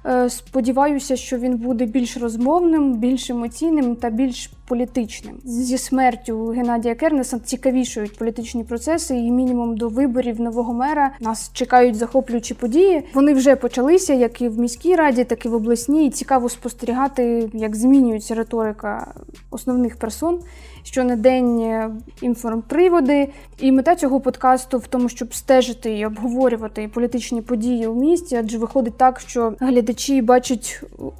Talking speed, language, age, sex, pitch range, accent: 140 wpm, Ukrainian, 20-39, female, 230-265 Hz, native